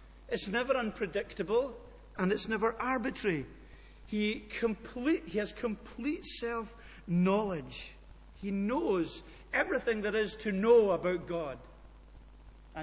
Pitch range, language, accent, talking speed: 165-225 Hz, English, British, 110 wpm